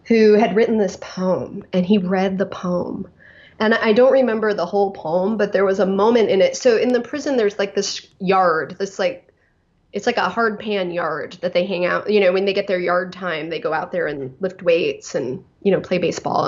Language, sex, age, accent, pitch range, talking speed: English, female, 20-39, American, 190-250 Hz, 235 wpm